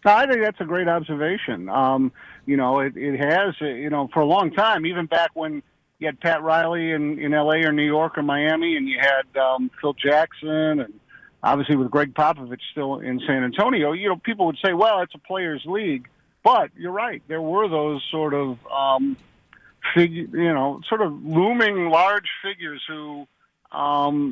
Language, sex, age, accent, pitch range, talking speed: English, male, 50-69, American, 140-175 Hz, 190 wpm